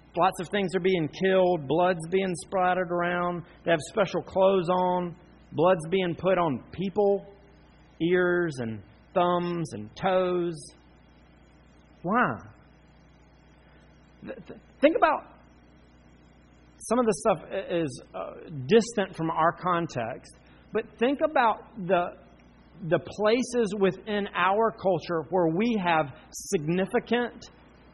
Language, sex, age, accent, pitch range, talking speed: English, male, 40-59, American, 140-190 Hz, 115 wpm